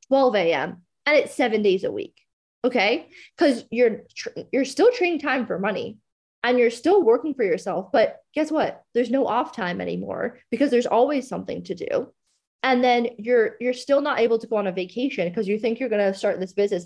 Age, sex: 20-39, female